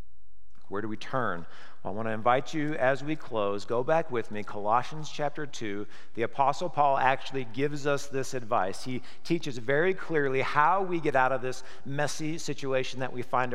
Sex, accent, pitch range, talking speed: male, American, 120-150 Hz, 185 wpm